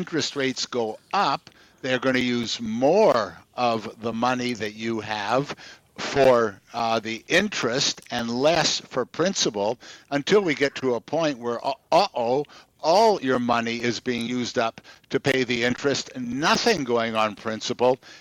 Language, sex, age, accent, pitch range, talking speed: English, male, 60-79, American, 115-135 Hz, 150 wpm